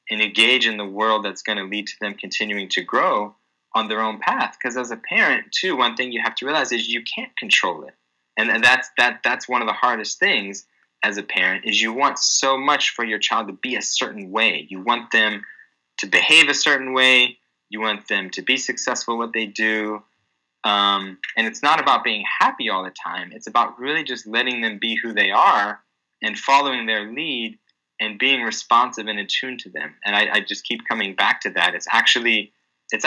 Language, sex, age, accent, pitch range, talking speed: English, male, 20-39, American, 95-120 Hz, 220 wpm